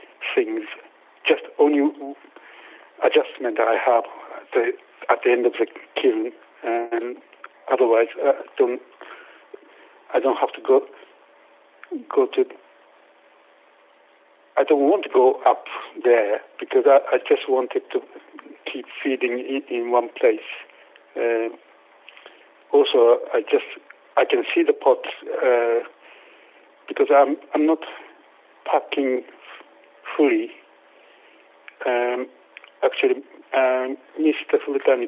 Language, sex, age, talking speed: English, male, 70-89, 110 wpm